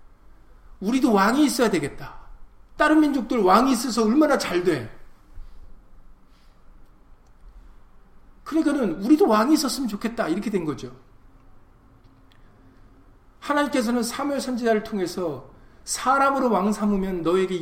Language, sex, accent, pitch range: Korean, male, native, 140-220 Hz